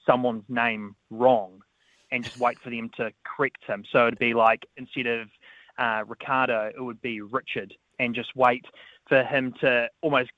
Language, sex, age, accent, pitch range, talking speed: English, male, 20-39, Australian, 120-155 Hz, 175 wpm